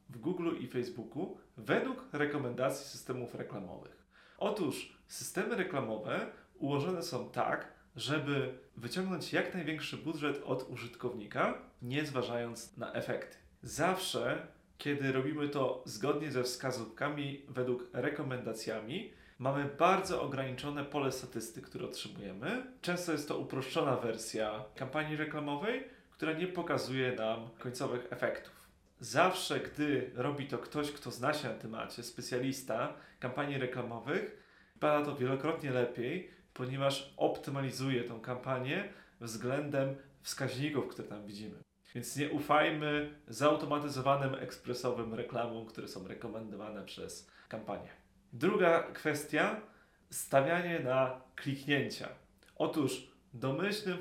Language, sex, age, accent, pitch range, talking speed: Polish, male, 30-49, native, 125-150 Hz, 110 wpm